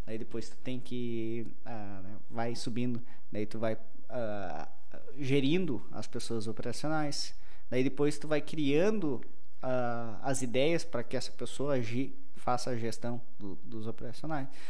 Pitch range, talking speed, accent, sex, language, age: 120-145 Hz, 145 wpm, Brazilian, male, Portuguese, 20-39